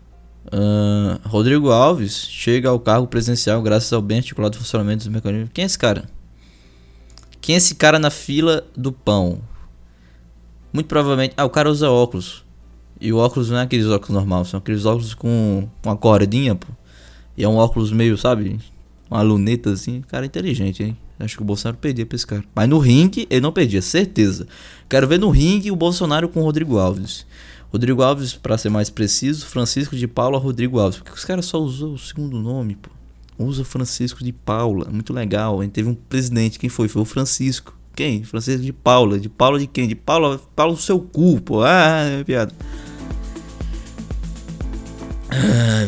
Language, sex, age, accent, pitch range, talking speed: Portuguese, male, 20-39, Brazilian, 100-135 Hz, 180 wpm